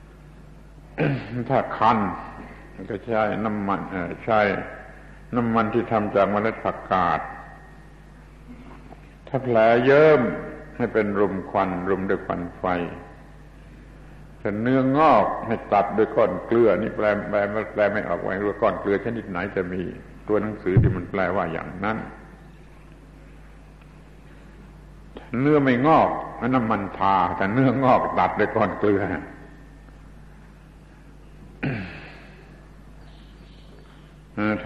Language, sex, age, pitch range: Thai, male, 70-89, 100-135 Hz